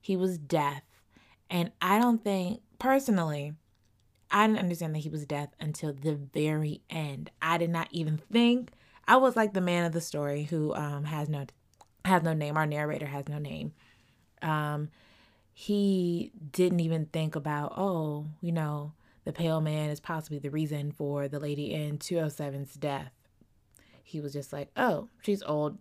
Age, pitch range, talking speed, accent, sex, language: 20-39, 145-195 Hz, 170 wpm, American, female, English